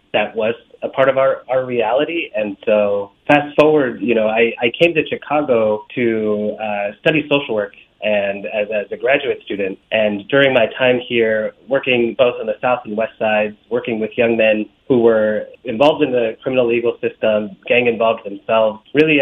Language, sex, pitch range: English, male, 105-135 Hz